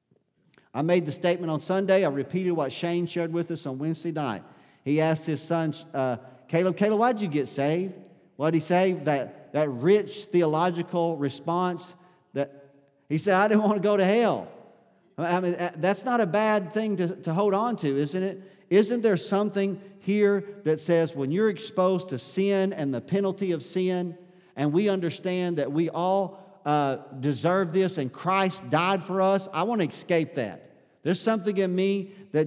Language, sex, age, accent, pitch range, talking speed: English, male, 50-69, American, 135-185 Hz, 185 wpm